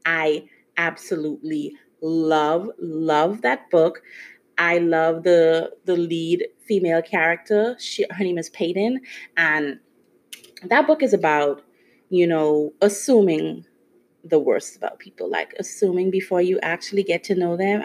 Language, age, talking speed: English, 30-49, 130 wpm